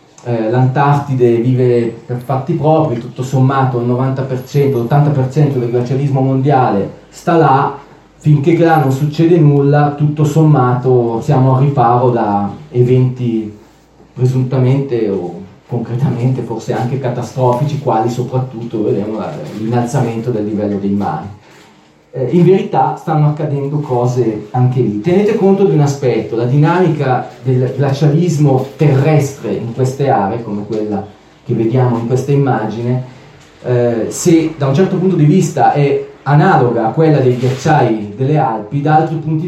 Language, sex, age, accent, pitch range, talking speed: Italian, male, 30-49, native, 125-150 Hz, 130 wpm